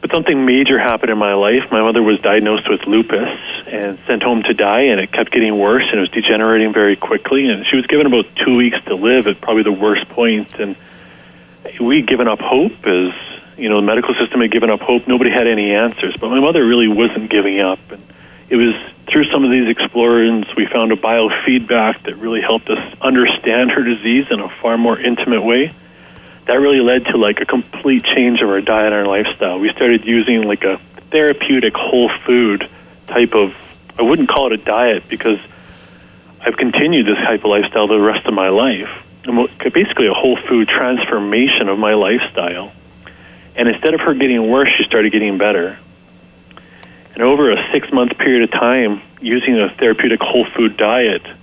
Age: 40-59